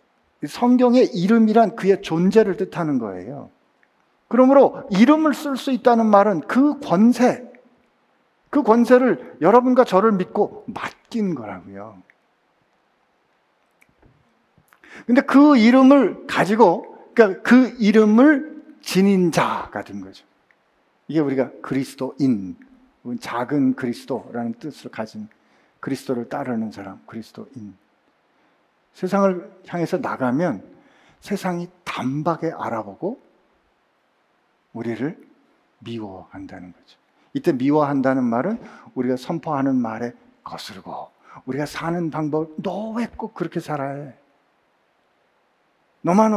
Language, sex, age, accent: Korean, male, 50-69, native